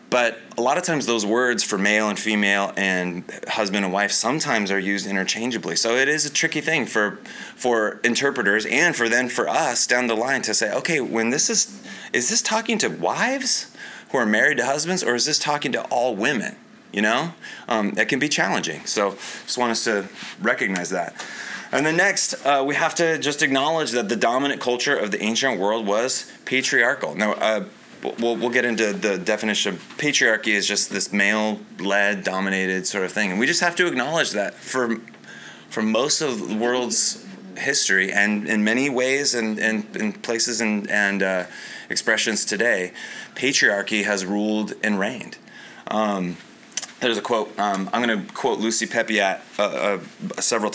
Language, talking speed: English, 185 wpm